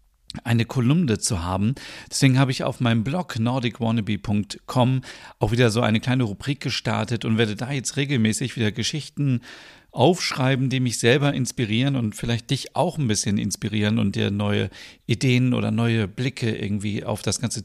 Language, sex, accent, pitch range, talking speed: German, male, German, 110-140 Hz, 165 wpm